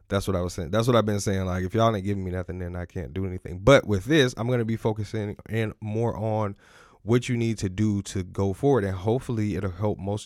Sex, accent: male, American